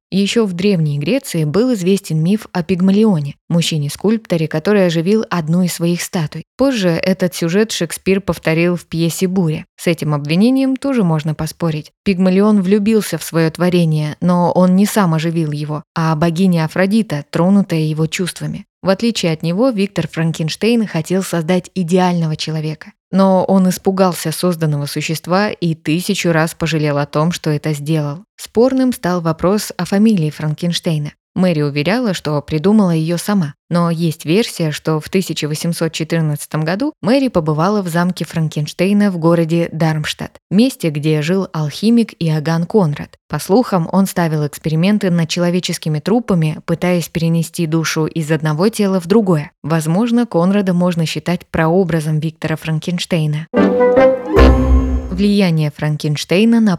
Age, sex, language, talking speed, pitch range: 20-39, female, Russian, 135 wpm, 160-195 Hz